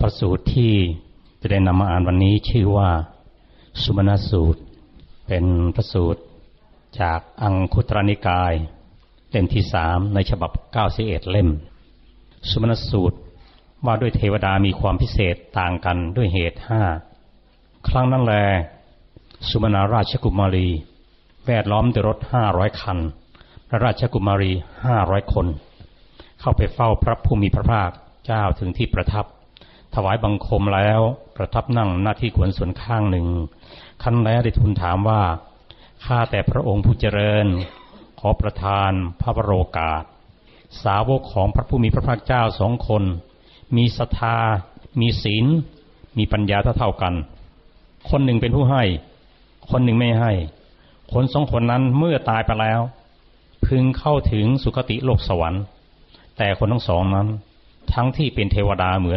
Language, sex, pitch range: Thai, male, 90-115 Hz